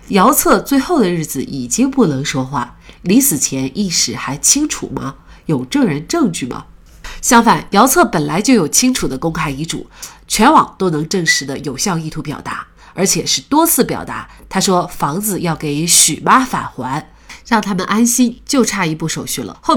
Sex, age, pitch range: female, 30-49, 150-230 Hz